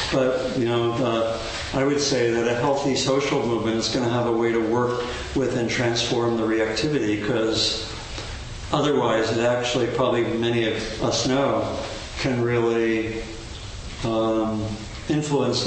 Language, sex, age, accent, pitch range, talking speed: English, male, 50-69, American, 115-130 Hz, 145 wpm